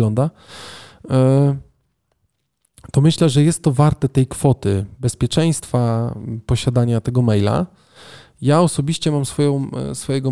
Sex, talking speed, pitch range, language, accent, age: male, 105 wpm, 115-145 Hz, Polish, native, 20-39